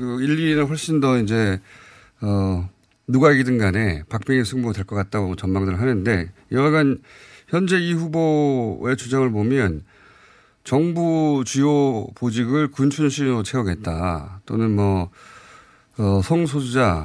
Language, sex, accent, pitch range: Korean, male, native, 100-150 Hz